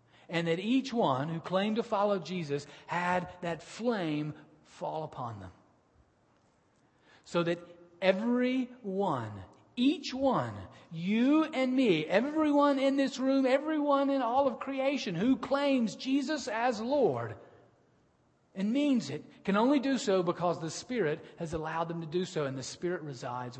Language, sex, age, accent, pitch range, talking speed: English, male, 40-59, American, 150-230 Hz, 145 wpm